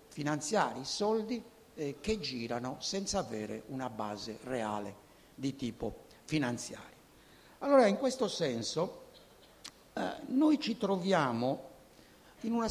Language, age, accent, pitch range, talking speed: Italian, 60-79, native, 120-205 Hz, 110 wpm